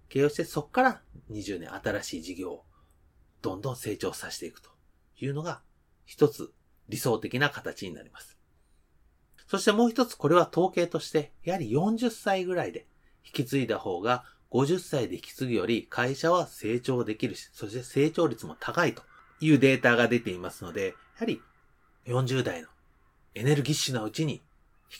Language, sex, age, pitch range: Japanese, male, 30-49, 110-170 Hz